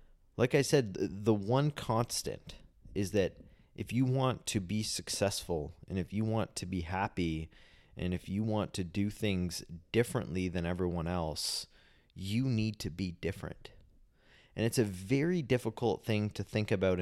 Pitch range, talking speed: 90-110 Hz, 160 wpm